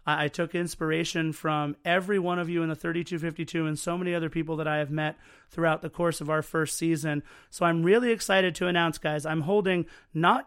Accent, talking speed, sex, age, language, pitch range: American, 210 wpm, male, 30-49, English, 155-180 Hz